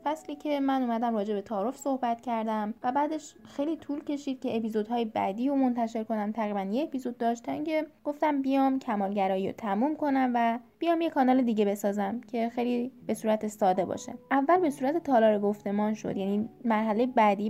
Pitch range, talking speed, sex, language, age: 215-275 Hz, 180 wpm, female, Persian, 10-29